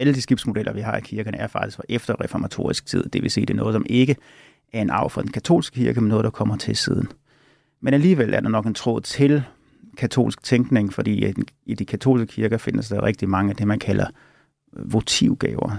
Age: 30-49